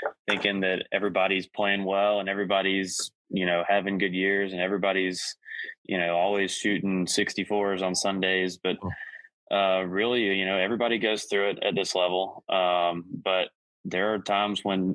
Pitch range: 90-100 Hz